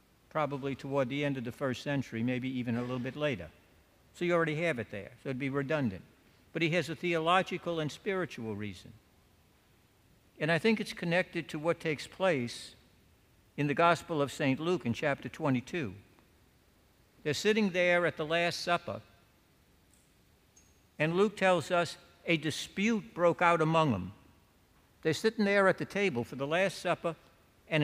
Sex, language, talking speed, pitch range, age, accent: male, English, 170 wpm, 105-170 Hz, 60-79, American